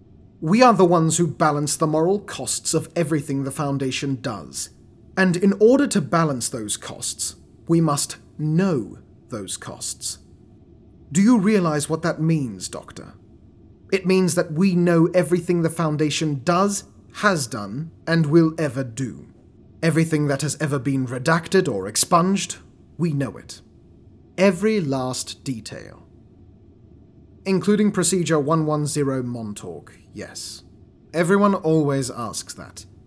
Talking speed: 130 wpm